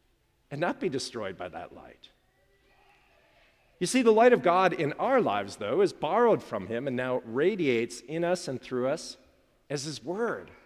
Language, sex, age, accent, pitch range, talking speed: English, male, 50-69, American, 140-200 Hz, 180 wpm